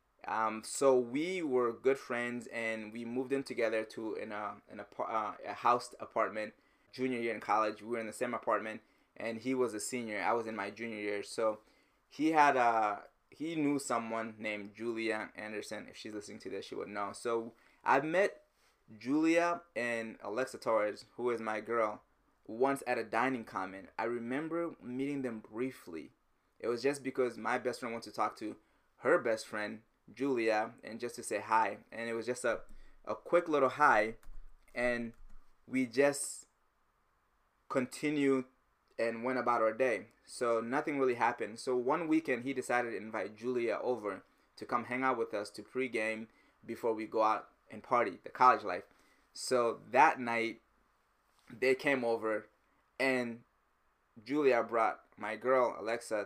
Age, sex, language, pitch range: 20-39, male, English, 110-130 Hz